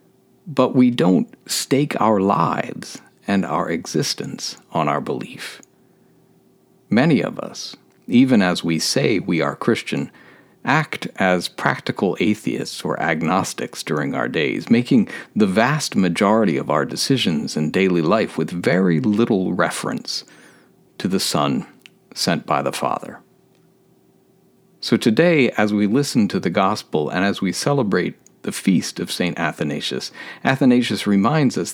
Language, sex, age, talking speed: English, male, 50-69, 135 wpm